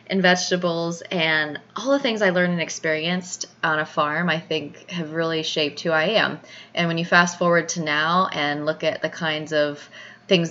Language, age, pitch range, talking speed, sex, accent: English, 20-39, 150-180 Hz, 195 wpm, female, American